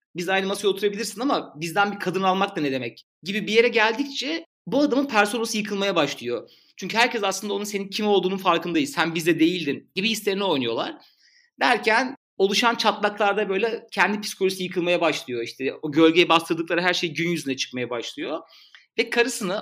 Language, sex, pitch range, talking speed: Turkish, male, 170-220 Hz, 170 wpm